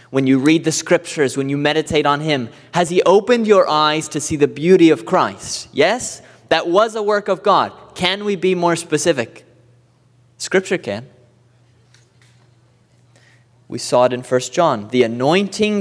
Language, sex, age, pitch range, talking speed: English, male, 30-49, 125-170 Hz, 165 wpm